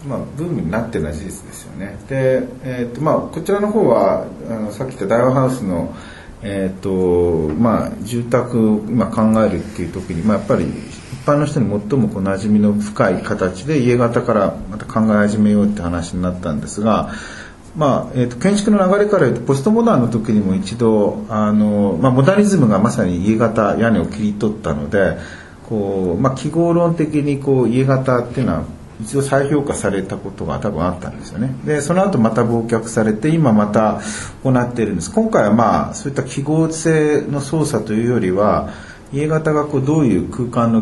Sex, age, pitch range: male, 40-59, 100-140 Hz